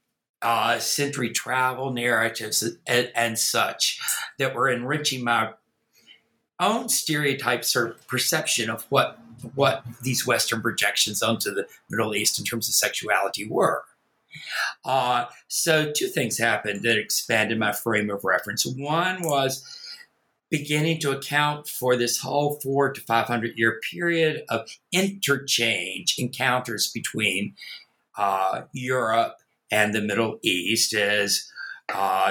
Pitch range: 115-140 Hz